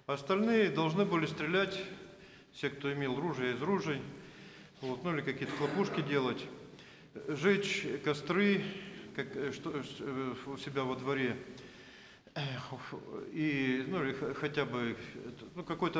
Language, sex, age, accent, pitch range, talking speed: Russian, male, 40-59, native, 130-175 Hz, 100 wpm